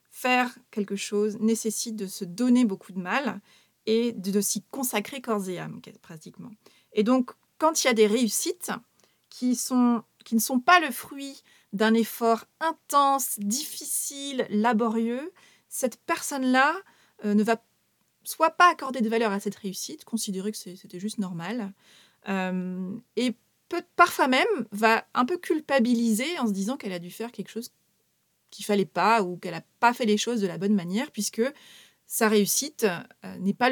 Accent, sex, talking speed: French, female, 165 wpm